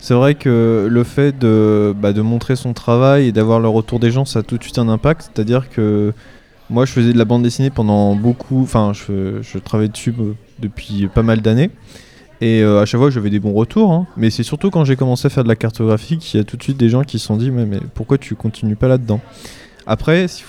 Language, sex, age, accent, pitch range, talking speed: French, male, 20-39, French, 110-135 Hz, 250 wpm